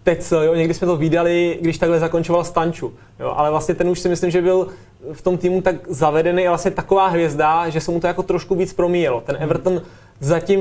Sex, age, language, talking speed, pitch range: male, 20-39, Czech, 215 wpm, 160-175 Hz